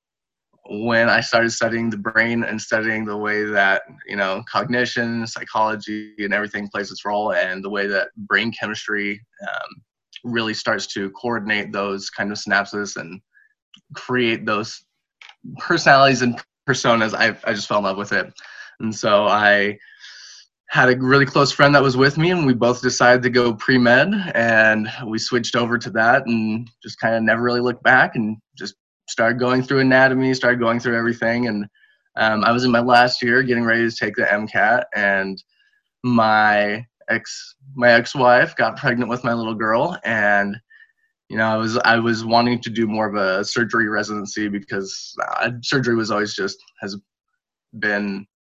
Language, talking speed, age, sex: English, 175 wpm, 20-39, male